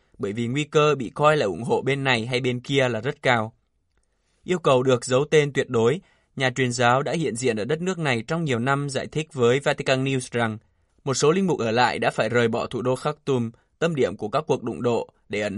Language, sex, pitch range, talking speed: Vietnamese, male, 115-145 Hz, 250 wpm